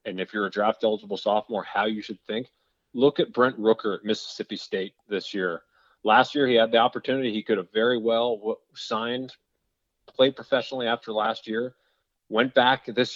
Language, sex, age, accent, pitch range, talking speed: English, male, 30-49, American, 105-125 Hz, 180 wpm